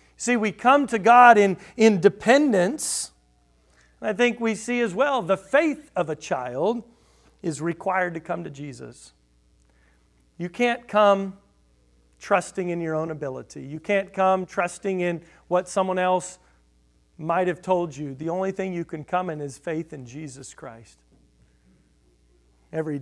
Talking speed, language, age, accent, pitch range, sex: 150 wpm, English, 40-59, American, 150-185 Hz, male